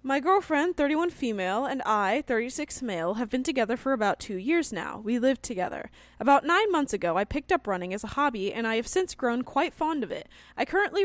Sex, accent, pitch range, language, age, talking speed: female, American, 230-335 Hz, English, 10-29, 225 wpm